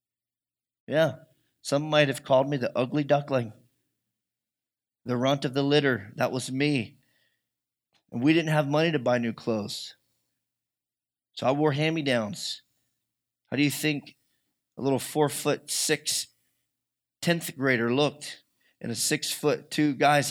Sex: male